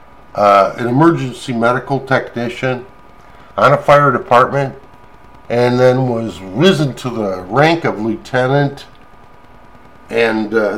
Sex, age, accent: male, 50-69, American